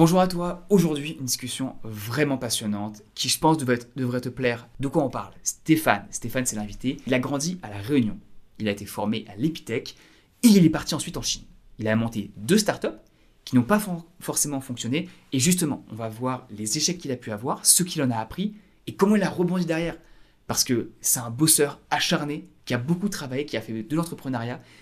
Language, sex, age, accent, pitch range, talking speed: French, male, 20-39, French, 115-160 Hz, 215 wpm